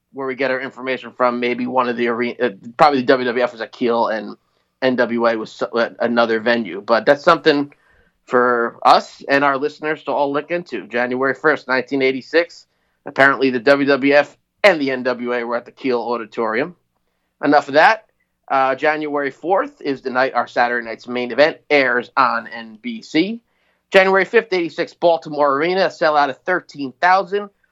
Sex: male